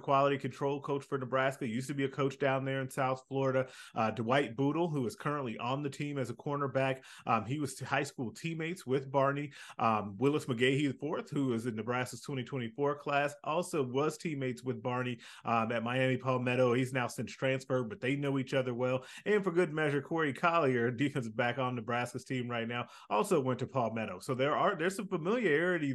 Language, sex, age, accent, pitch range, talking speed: English, male, 30-49, American, 125-145 Hz, 205 wpm